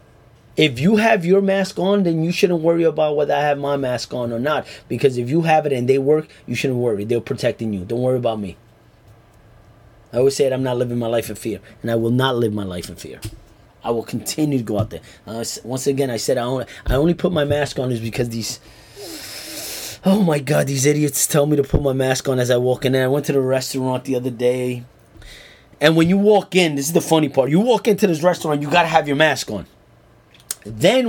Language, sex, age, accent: English, male, 30-49, American